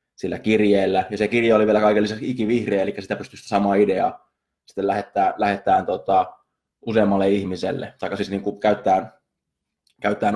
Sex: male